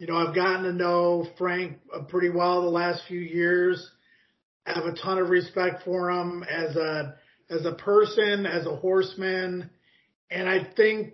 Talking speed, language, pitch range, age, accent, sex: 165 wpm, English, 180-205 Hz, 30-49, American, male